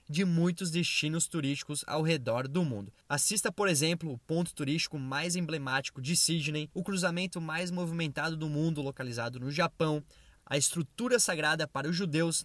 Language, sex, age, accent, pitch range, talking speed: Portuguese, male, 20-39, Brazilian, 145-180 Hz, 160 wpm